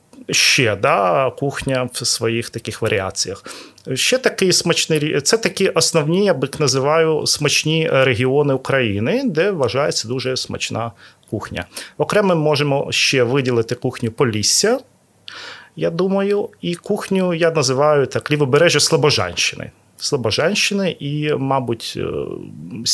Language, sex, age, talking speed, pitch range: Ukrainian, male, 30-49, 110 wpm, 125-180 Hz